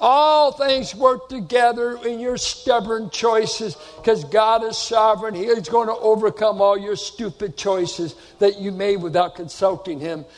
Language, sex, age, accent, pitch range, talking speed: English, male, 60-79, American, 170-225 Hz, 150 wpm